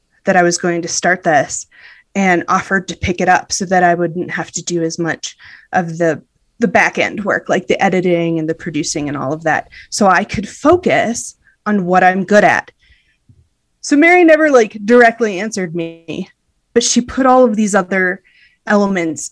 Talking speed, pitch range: 195 wpm, 175-245 Hz